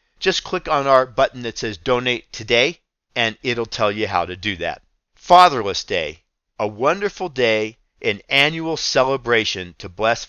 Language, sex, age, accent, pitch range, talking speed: English, male, 50-69, American, 105-135 Hz, 155 wpm